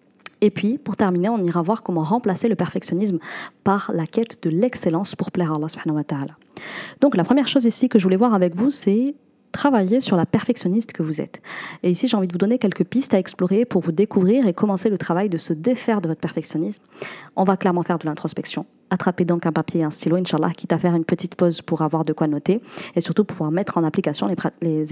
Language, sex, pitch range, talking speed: French, female, 170-215 Hz, 235 wpm